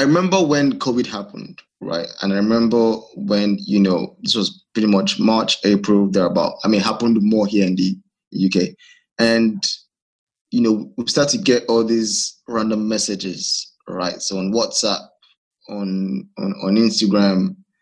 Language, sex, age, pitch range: English, male, 20-39, 105-135 Hz